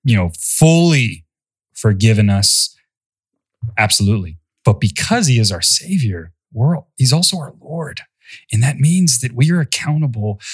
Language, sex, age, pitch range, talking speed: English, male, 30-49, 105-150 Hz, 135 wpm